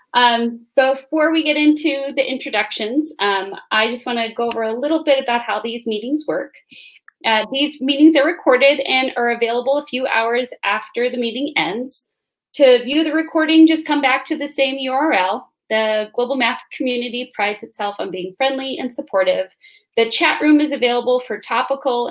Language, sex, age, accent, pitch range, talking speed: English, female, 30-49, American, 220-290 Hz, 180 wpm